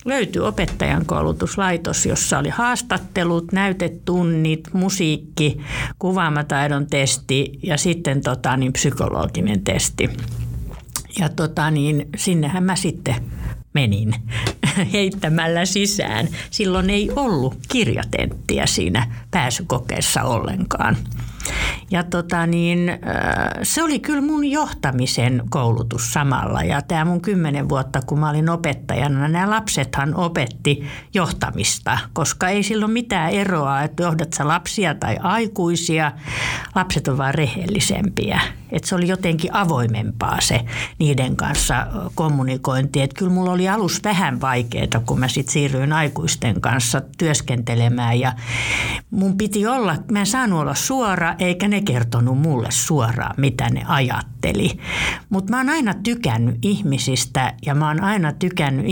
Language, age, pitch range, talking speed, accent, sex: Finnish, 60-79, 130-185 Hz, 120 wpm, native, female